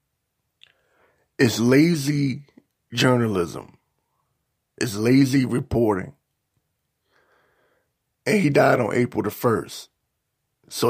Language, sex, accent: English, male, American